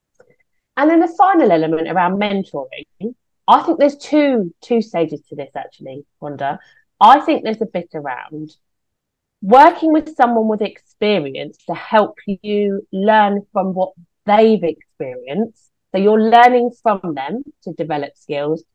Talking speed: 140 wpm